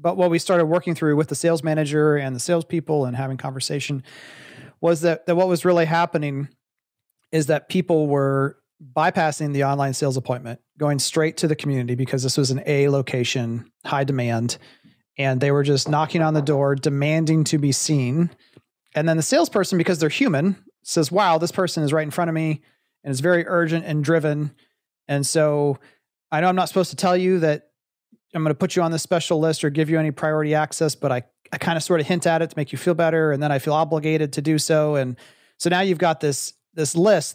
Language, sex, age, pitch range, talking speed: English, male, 30-49, 140-170 Hz, 220 wpm